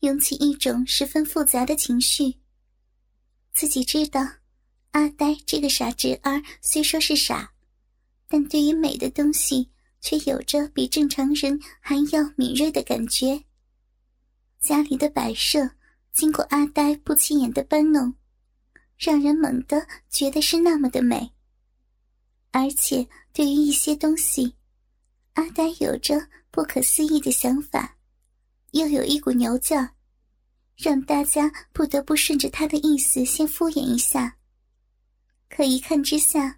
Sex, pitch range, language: male, 265-305 Hz, Chinese